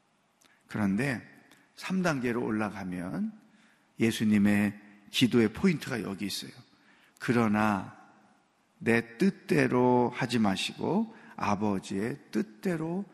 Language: Korean